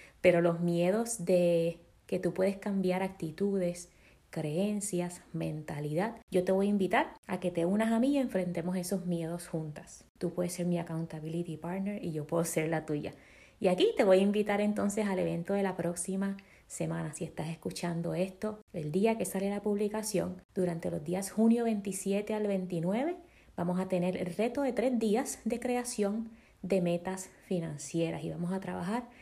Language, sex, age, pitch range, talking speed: Spanish, female, 20-39, 170-205 Hz, 175 wpm